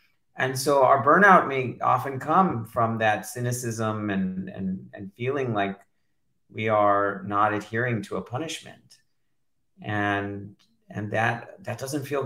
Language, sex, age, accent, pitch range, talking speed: English, male, 40-59, American, 105-150 Hz, 135 wpm